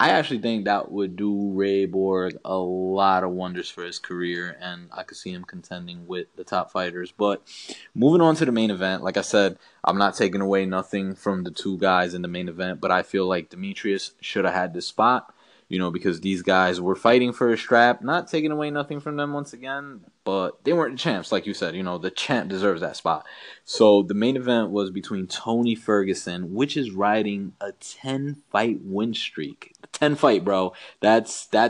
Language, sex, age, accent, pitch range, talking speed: English, male, 20-39, American, 90-125 Hz, 205 wpm